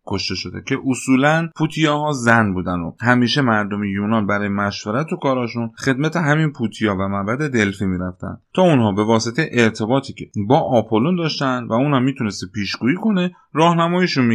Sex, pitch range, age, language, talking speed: male, 105-140 Hz, 30-49, Persian, 155 wpm